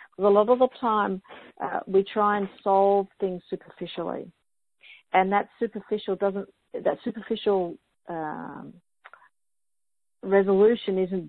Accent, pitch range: Australian, 180-210 Hz